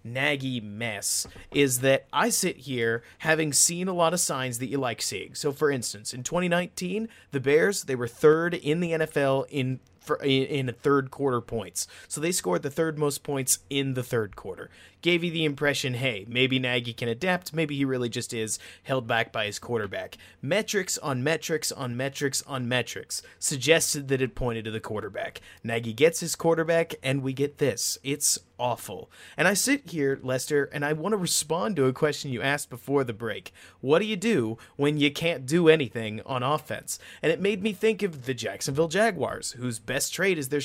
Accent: American